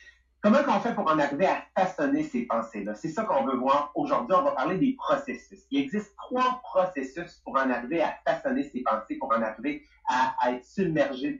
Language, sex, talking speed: English, male, 215 wpm